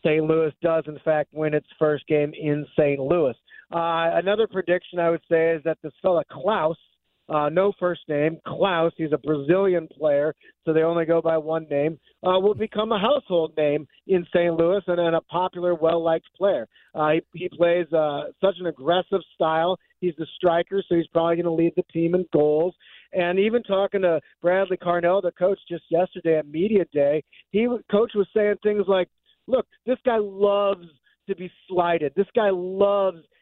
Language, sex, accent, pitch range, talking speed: English, male, American, 160-195 Hz, 190 wpm